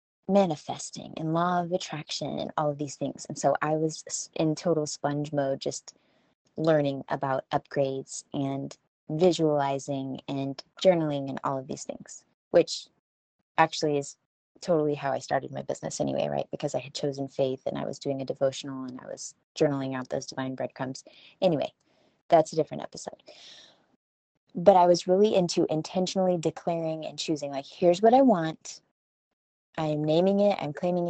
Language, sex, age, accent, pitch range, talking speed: English, female, 20-39, American, 140-165 Hz, 165 wpm